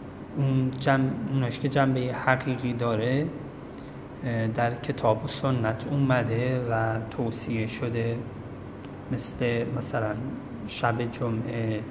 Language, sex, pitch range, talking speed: Persian, male, 110-130 Hz, 90 wpm